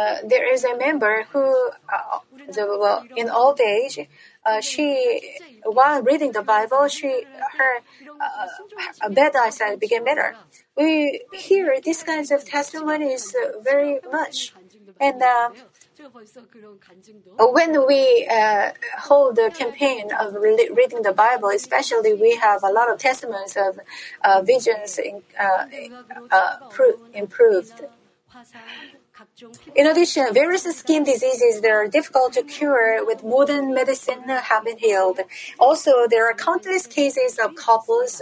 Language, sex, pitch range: Korean, female, 230-330 Hz